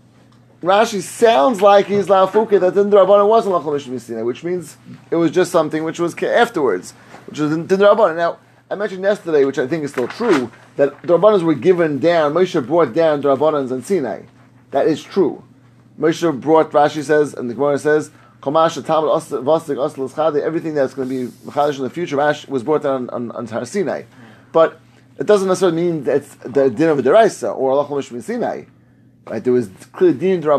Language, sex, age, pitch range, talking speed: English, male, 30-49, 125-170 Hz, 185 wpm